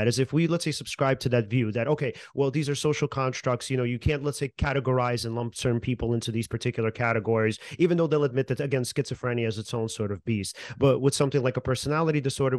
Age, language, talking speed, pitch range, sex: 30-49, English, 245 wpm, 125-150 Hz, male